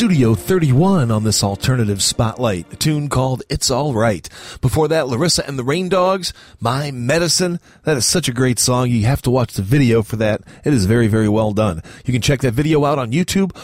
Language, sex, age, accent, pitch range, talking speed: English, male, 40-59, American, 115-175 Hz, 215 wpm